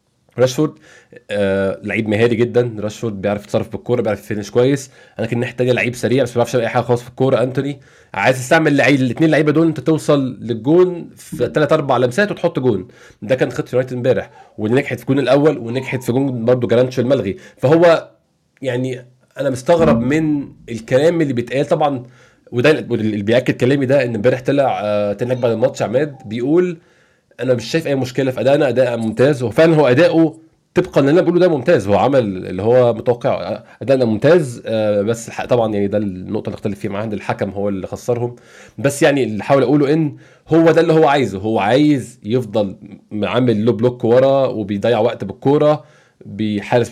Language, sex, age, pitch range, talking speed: Arabic, male, 20-39, 115-145 Hz, 180 wpm